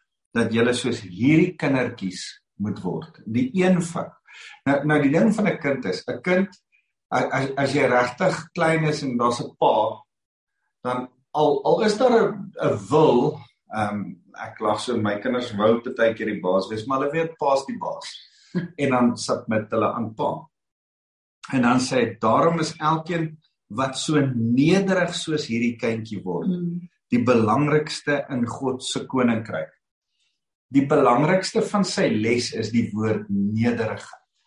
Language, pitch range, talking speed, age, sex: English, 120-160 Hz, 155 wpm, 50-69, male